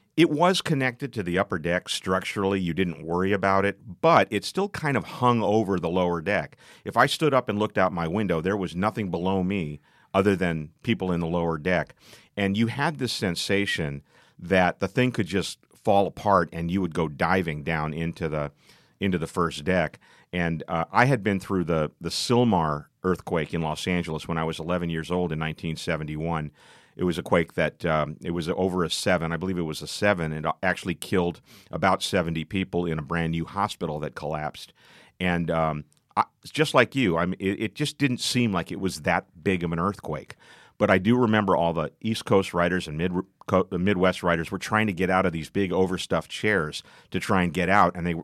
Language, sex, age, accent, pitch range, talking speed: English, male, 40-59, American, 80-100 Hz, 205 wpm